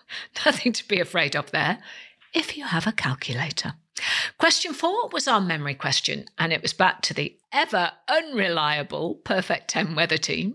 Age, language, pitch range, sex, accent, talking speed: 50-69, English, 170-250 Hz, female, British, 165 wpm